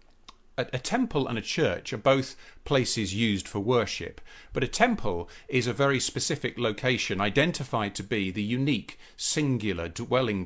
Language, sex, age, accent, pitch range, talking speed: English, male, 40-59, British, 95-135 Hz, 150 wpm